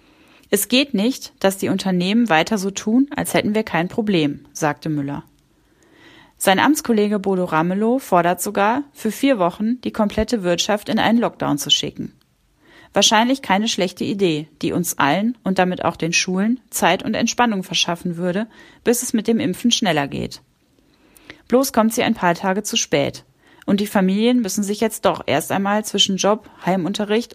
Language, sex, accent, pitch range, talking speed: German, female, German, 185-235 Hz, 170 wpm